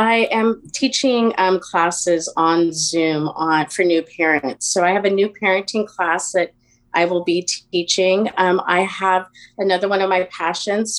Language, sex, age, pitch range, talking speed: English, female, 30-49, 165-195 Hz, 165 wpm